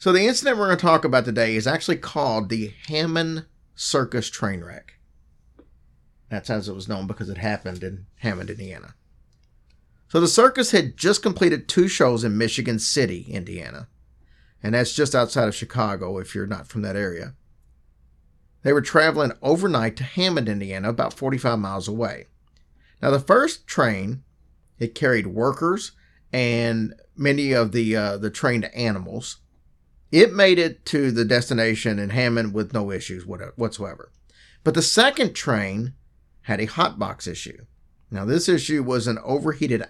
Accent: American